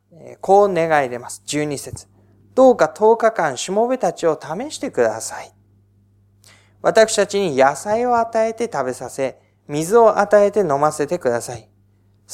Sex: male